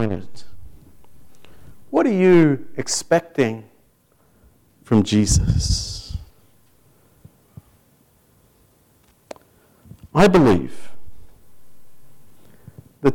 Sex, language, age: male, English, 50-69